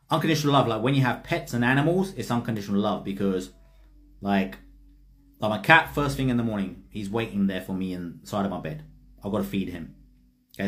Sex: male